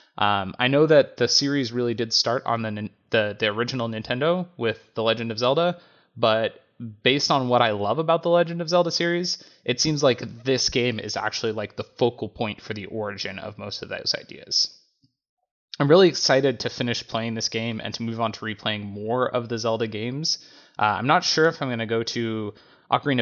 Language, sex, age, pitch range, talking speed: English, male, 20-39, 110-145 Hz, 210 wpm